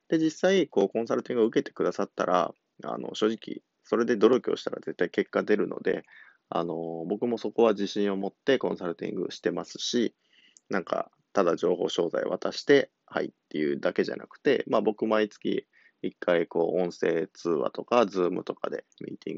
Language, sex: Japanese, male